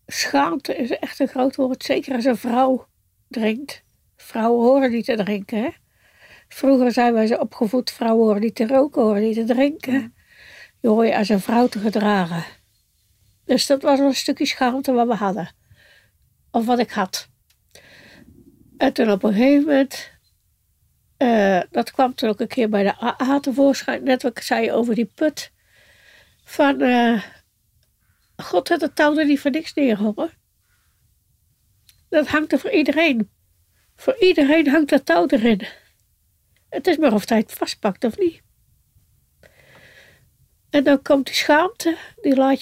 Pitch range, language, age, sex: 220-280 Hz, Dutch, 60-79, female